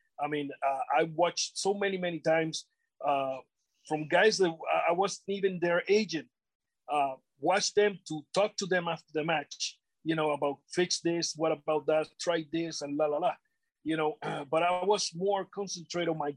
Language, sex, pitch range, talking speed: English, male, 160-205 Hz, 185 wpm